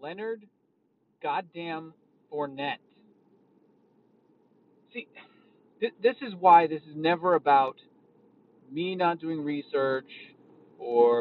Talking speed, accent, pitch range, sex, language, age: 85 wpm, American, 155-220 Hz, male, English, 40-59